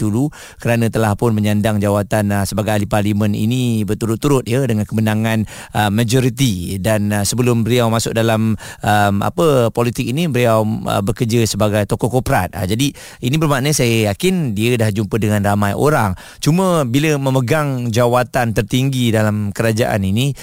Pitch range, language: 110-135 Hz, Malay